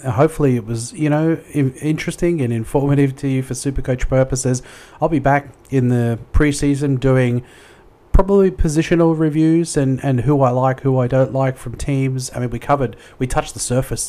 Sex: male